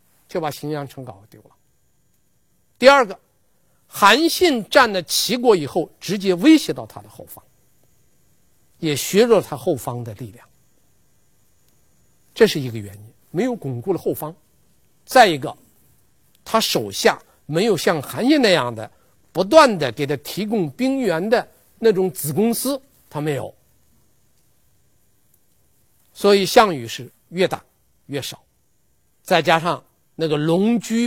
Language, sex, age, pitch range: Chinese, male, 50-69, 130-200 Hz